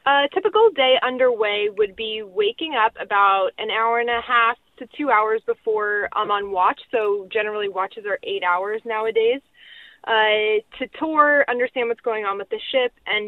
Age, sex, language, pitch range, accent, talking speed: 20-39, female, English, 200-255 Hz, American, 175 wpm